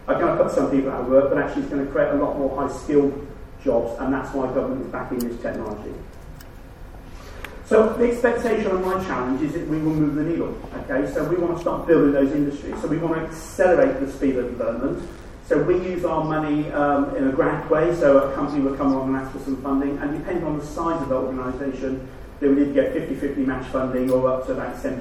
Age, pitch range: 40-59, 130-160 Hz